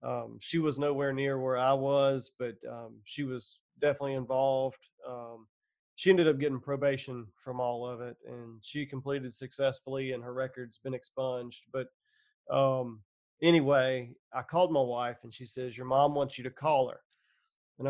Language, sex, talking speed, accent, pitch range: English, male, 170 wpm, American, 125-150 Hz